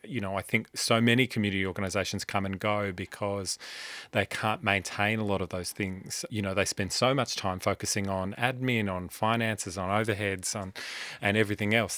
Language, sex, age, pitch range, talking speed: English, male, 30-49, 95-115 Hz, 185 wpm